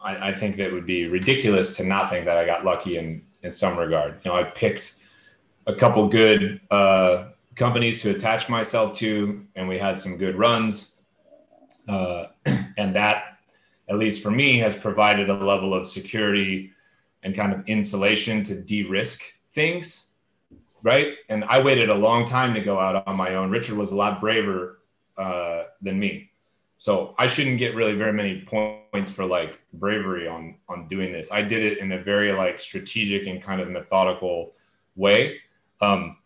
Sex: male